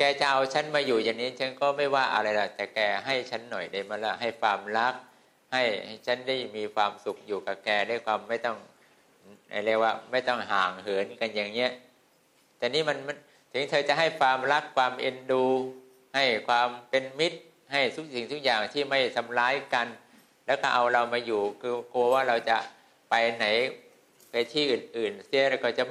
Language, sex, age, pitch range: English, male, 60-79, 110-135 Hz